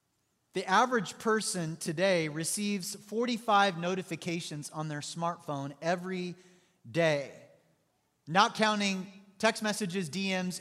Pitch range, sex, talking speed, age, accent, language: 165-215 Hz, male, 95 wpm, 30-49, American, English